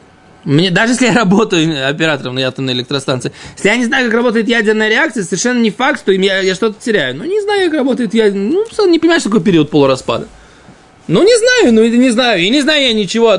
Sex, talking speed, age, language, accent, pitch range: male, 220 wpm, 20-39, Russian, native, 175-245 Hz